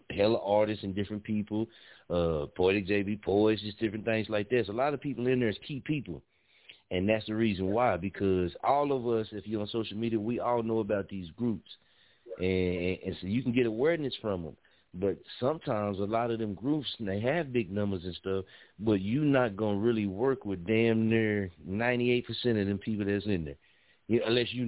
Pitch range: 100-115 Hz